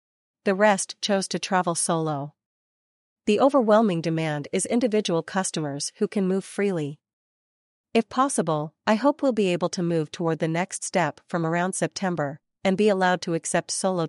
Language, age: English, 40-59